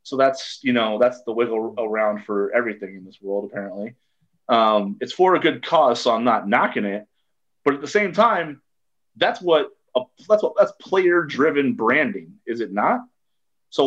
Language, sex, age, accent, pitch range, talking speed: English, male, 30-49, American, 110-160 Hz, 185 wpm